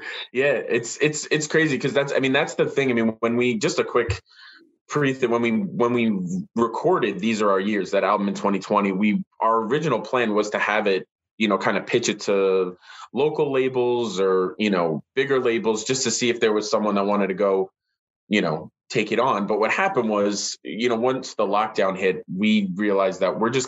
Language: English